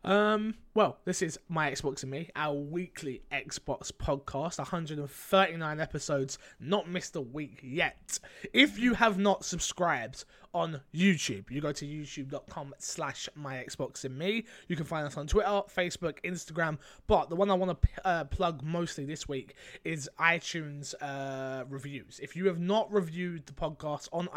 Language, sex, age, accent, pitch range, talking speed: English, male, 20-39, British, 140-180 Hz, 160 wpm